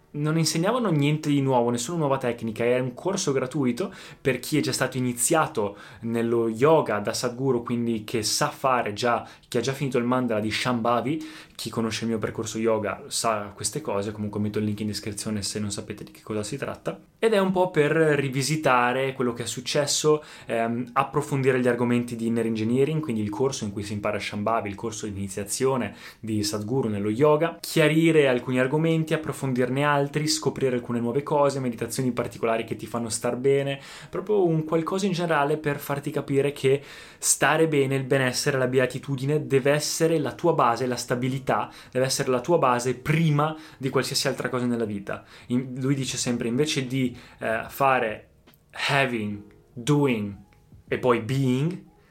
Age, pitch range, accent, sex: 20-39, 115-145 Hz, native, male